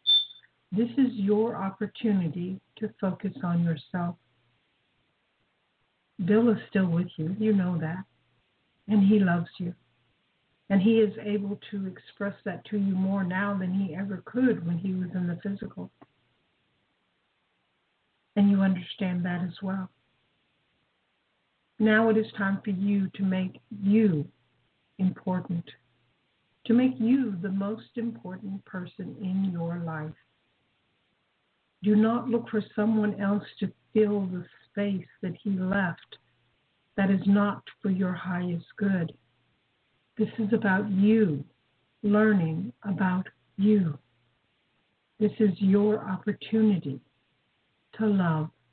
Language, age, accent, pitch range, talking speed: English, 60-79, American, 180-210 Hz, 125 wpm